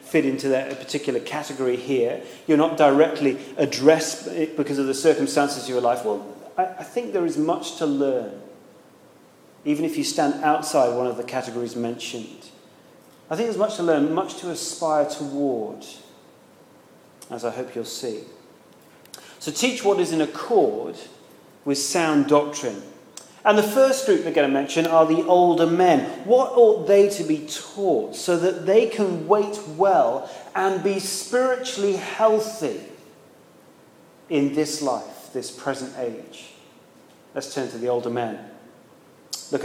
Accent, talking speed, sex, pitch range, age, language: British, 150 wpm, male, 135-195 Hz, 40-59, English